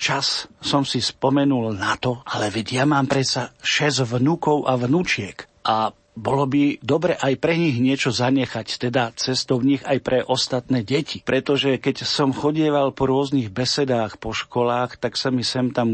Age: 40-59